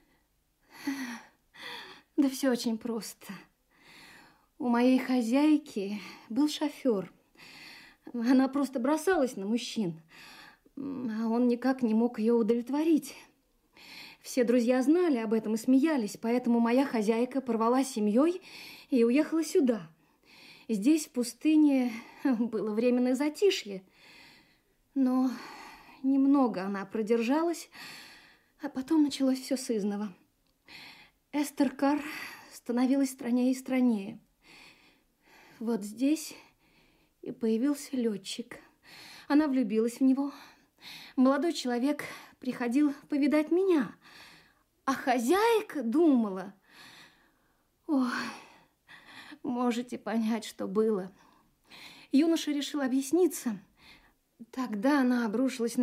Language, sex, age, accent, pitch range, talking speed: Russian, female, 20-39, native, 235-290 Hz, 90 wpm